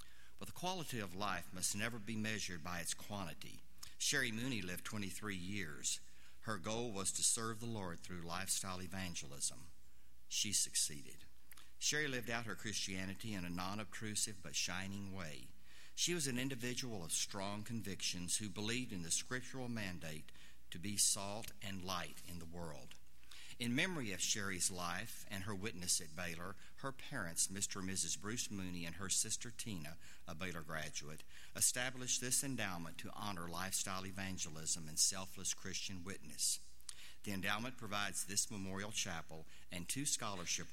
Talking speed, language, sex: 155 wpm, English, male